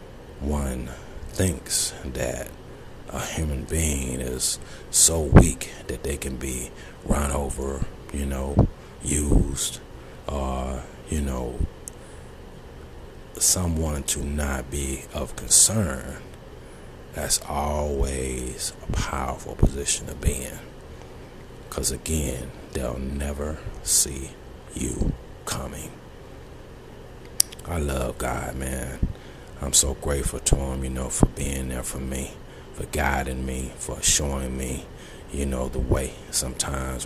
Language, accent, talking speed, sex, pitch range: English, American, 110 wpm, male, 65-75 Hz